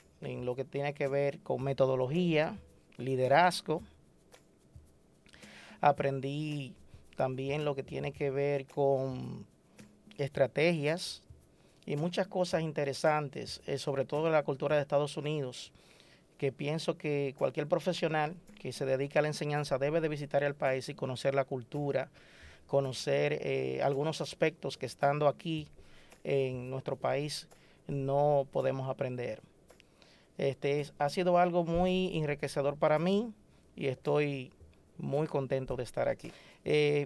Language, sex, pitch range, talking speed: Spanish, male, 140-165 Hz, 130 wpm